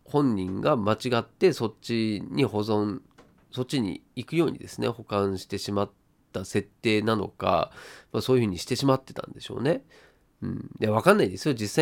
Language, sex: Japanese, male